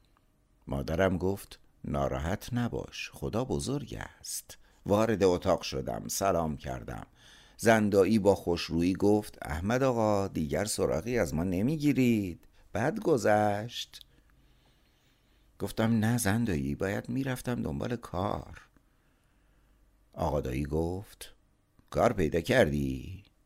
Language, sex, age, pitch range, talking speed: Persian, male, 60-79, 80-110 Hz, 95 wpm